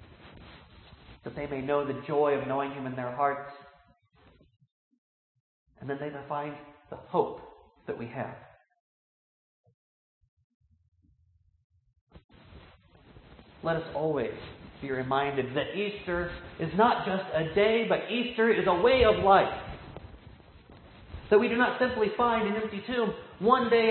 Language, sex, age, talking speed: English, male, 40-59, 130 wpm